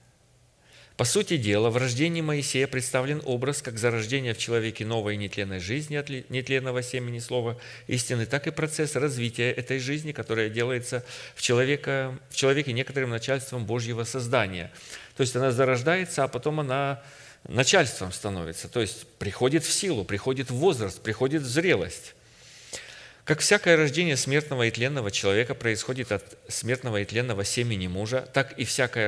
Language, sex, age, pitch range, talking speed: Russian, male, 40-59, 110-140 Hz, 150 wpm